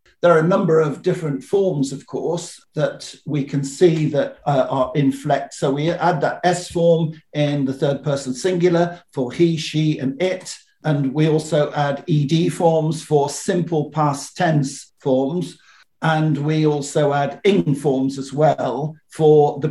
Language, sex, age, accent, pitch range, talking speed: English, male, 50-69, British, 135-170 Hz, 165 wpm